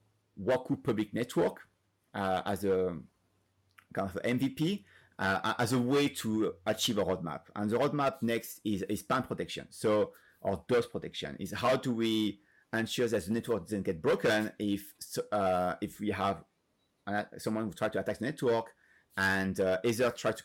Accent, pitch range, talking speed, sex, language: French, 100-130 Hz, 165 wpm, male, English